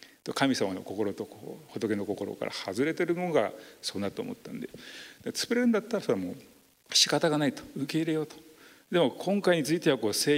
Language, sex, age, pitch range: Japanese, male, 40-59, 125-185 Hz